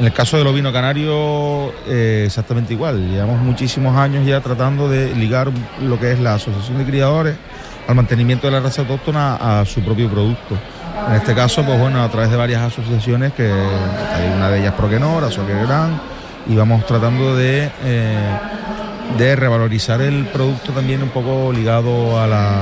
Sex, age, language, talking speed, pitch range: male, 30-49, Spanish, 175 wpm, 115-140 Hz